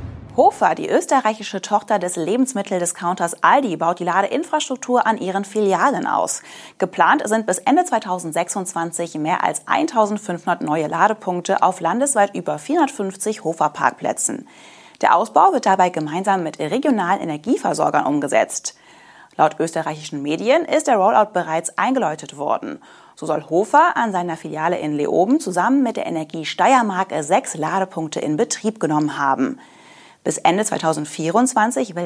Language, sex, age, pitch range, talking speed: German, female, 30-49, 165-245 Hz, 130 wpm